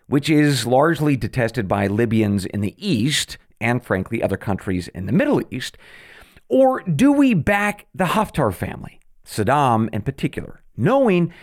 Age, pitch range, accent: 50-69, 115-180 Hz, American